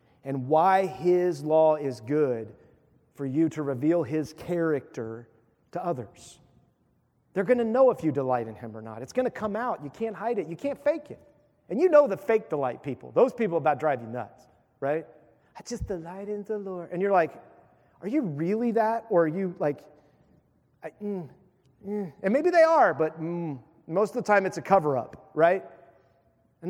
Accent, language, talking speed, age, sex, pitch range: American, English, 195 wpm, 40-59, male, 155-235 Hz